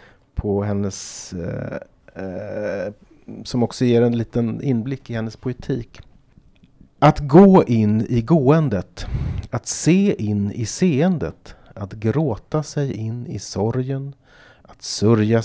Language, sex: Swedish, male